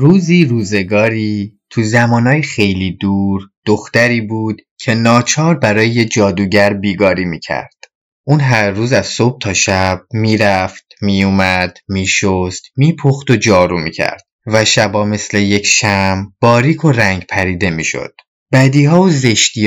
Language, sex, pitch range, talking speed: Persian, male, 100-130 Hz, 130 wpm